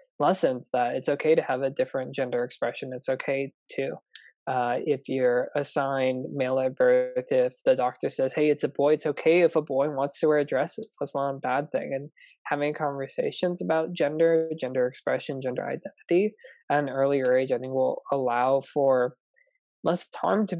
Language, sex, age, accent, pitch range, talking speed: English, male, 20-39, American, 130-155 Hz, 185 wpm